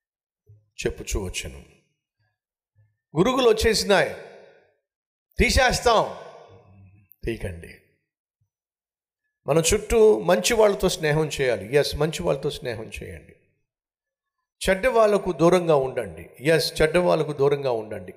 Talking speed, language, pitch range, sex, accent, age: 85 wpm, Telugu, 130-200 Hz, male, native, 50-69